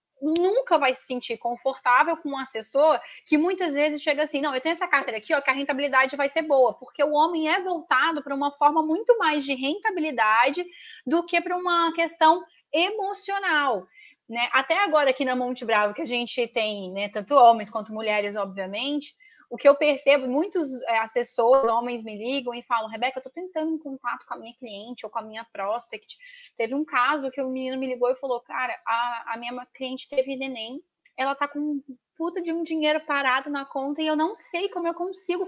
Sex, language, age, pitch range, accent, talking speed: female, Portuguese, 10-29, 255-340 Hz, Brazilian, 210 wpm